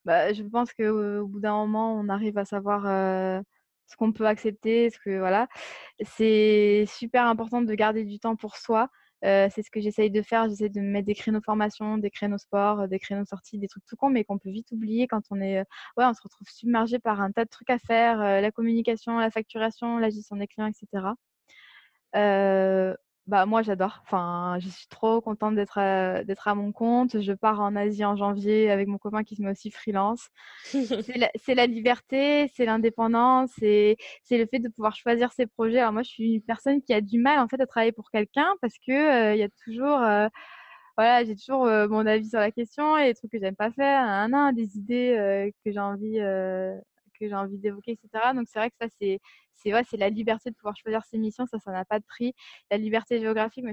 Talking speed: 230 wpm